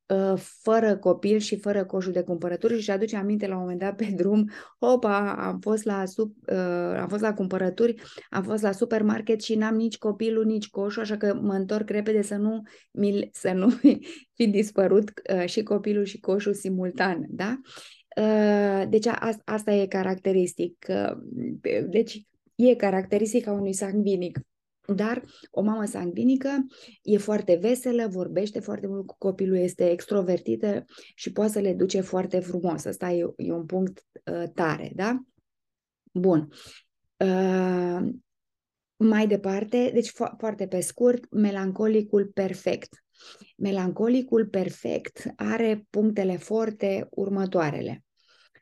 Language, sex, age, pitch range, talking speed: Romanian, female, 20-39, 190-220 Hz, 130 wpm